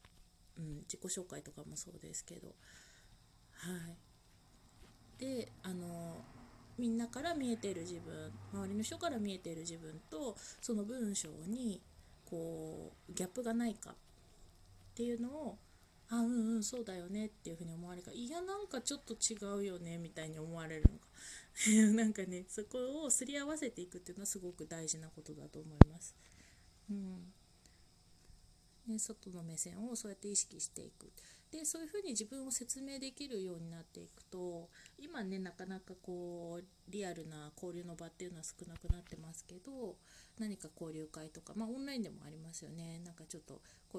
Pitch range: 160-215 Hz